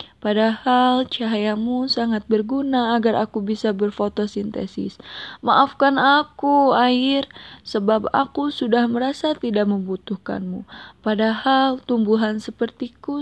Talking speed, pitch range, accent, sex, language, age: 90 wpm, 210-255 Hz, native, female, Indonesian, 20-39